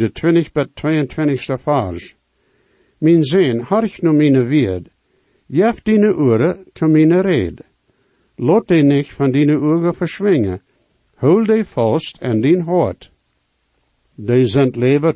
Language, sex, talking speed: English, male, 155 wpm